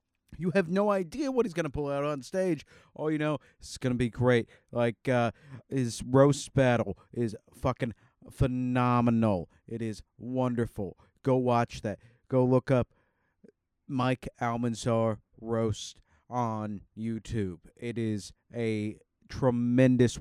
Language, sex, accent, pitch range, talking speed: English, male, American, 110-130 Hz, 135 wpm